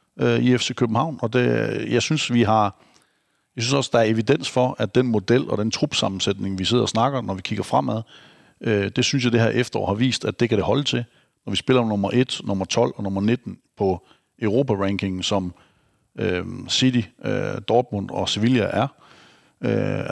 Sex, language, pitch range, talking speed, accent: male, Danish, 100-125 Hz, 195 wpm, native